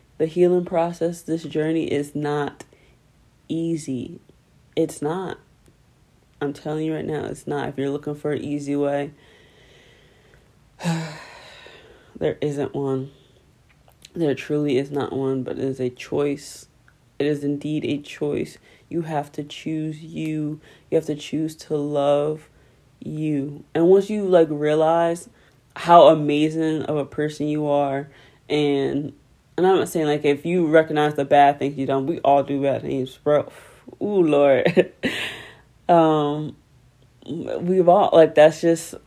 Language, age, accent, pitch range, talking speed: English, 20-39, American, 140-160 Hz, 145 wpm